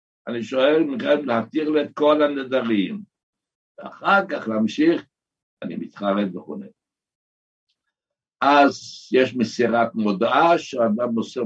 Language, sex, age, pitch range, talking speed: Hebrew, male, 60-79, 105-145 Hz, 105 wpm